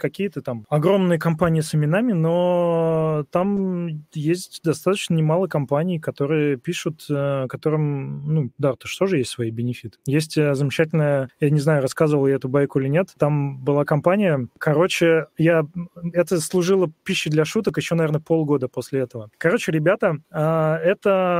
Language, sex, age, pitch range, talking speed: Russian, male, 20-39, 145-180 Hz, 145 wpm